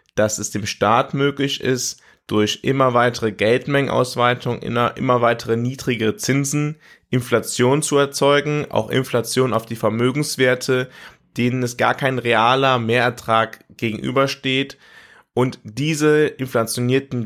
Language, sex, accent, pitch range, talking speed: German, male, German, 120-140 Hz, 110 wpm